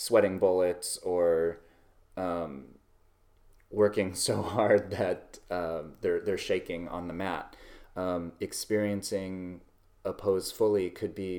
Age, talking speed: 30-49, 115 wpm